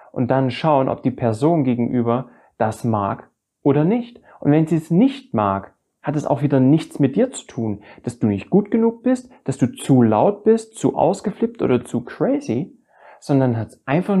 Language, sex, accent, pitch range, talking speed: German, male, German, 105-135 Hz, 195 wpm